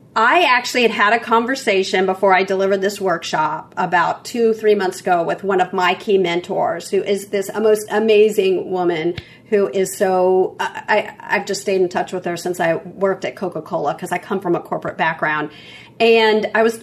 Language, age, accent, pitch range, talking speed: English, 40-59, American, 185-220 Hz, 195 wpm